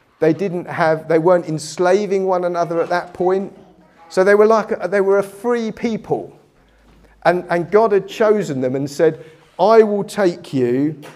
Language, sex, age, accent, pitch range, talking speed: English, male, 40-59, British, 150-190 Hz, 175 wpm